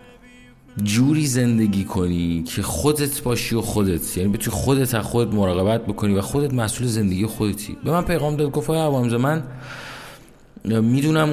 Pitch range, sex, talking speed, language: 105-145 Hz, male, 150 wpm, Persian